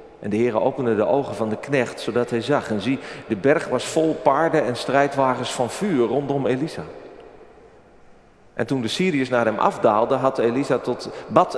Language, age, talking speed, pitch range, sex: Dutch, 40-59, 185 wpm, 110-135 Hz, male